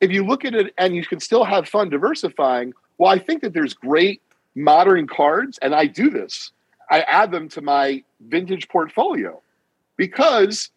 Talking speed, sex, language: 180 wpm, male, English